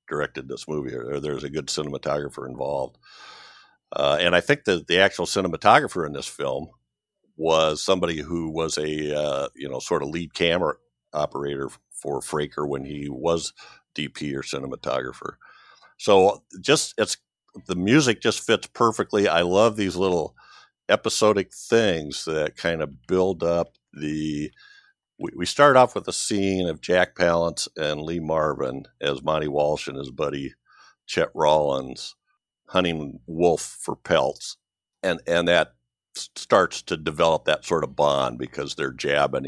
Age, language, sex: 50-69, English, male